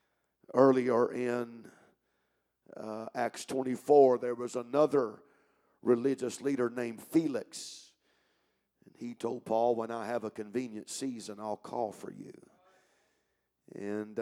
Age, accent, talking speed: 50-69, American, 115 wpm